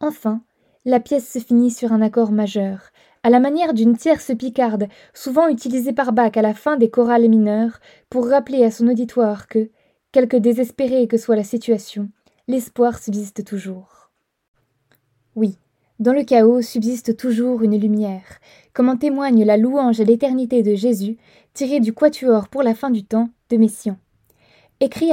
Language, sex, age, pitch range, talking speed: French, female, 20-39, 220-255 Hz, 160 wpm